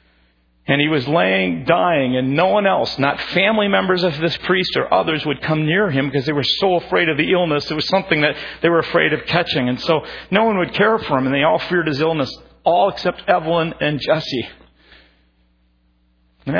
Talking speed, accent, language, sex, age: 210 wpm, American, English, male, 50-69